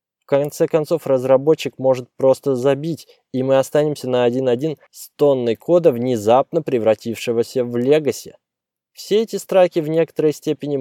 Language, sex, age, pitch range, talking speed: Russian, male, 20-39, 120-155 Hz, 140 wpm